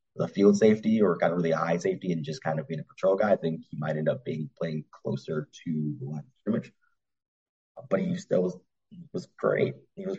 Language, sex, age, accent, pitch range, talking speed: English, male, 30-49, American, 85-105 Hz, 225 wpm